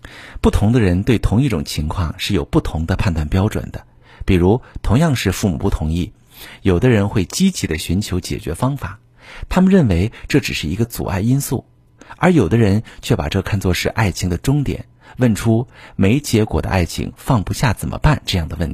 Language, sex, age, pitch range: Chinese, male, 50-69, 90-125 Hz